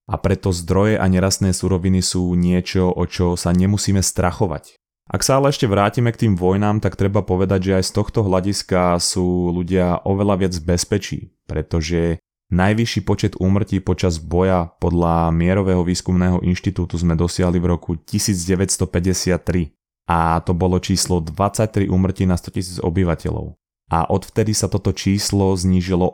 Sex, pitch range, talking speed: male, 90-100 Hz, 150 wpm